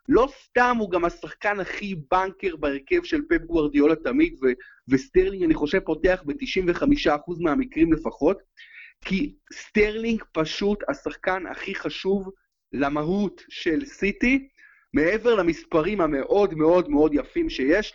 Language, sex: Hebrew, male